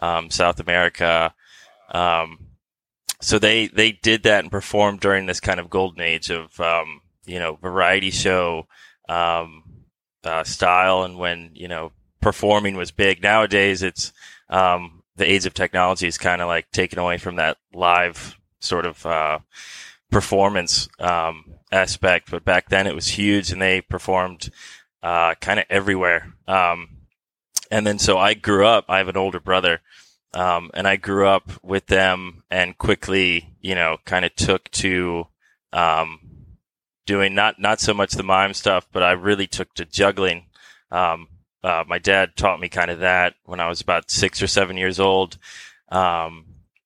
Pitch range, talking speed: 85-95 Hz, 165 wpm